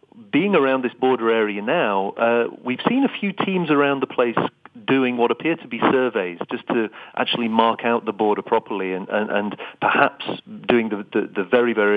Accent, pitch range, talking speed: British, 100-125 Hz, 195 wpm